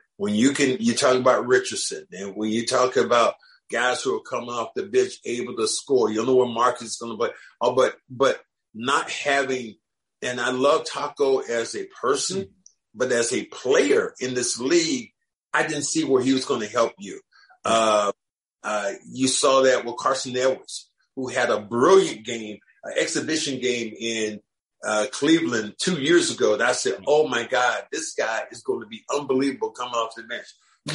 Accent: American